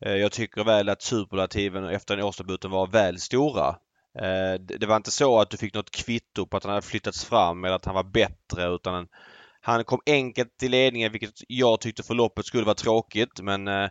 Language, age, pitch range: Swedish, 20-39, 95-110 Hz